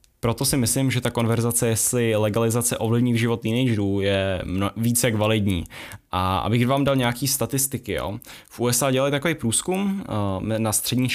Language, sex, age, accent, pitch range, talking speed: Czech, male, 10-29, native, 105-125 Hz, 140 wpm